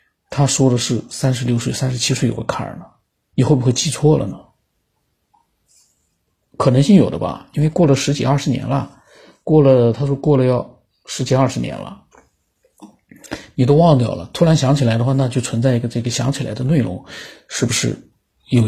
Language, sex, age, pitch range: Chinese, male, 50-69, 125-150 Hz